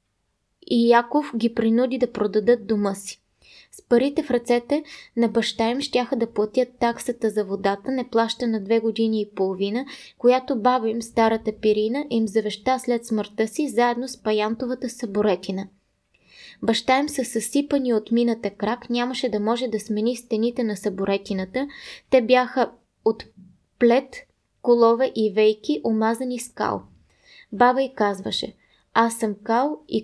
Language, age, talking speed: Bulgarian, 20-39, 145 wpm